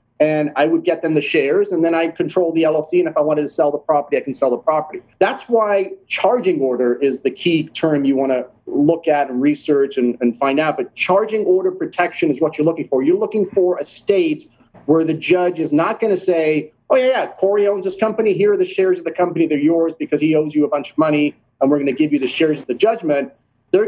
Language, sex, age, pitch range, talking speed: English, male, 30-49, 145-200 Hz, 260 wpm